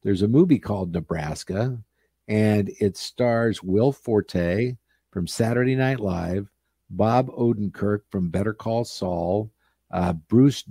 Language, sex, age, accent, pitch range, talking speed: English, male, 50-69, American, 95-125 Hz, 125 wpm